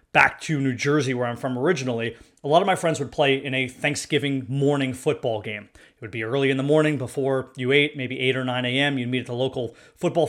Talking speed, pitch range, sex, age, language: 245 wpm, 135-180 Hz, male, 30-49, English